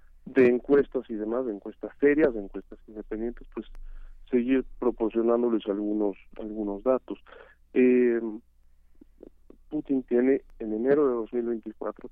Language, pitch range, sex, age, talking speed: Spanish, 95-130 Hz, male, 40-59, 115 wpm